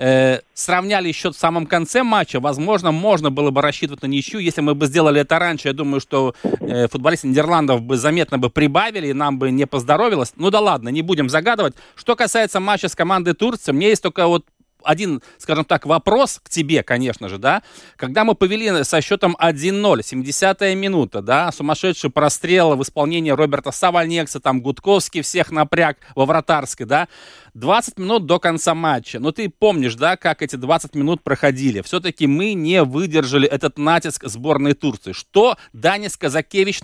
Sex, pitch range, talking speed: male, 140-180 Hz, 175 wpm